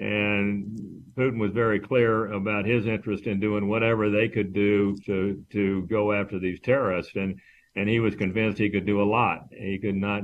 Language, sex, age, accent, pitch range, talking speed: English, male, 60-79, American, 100-115 Hz, 195 wpm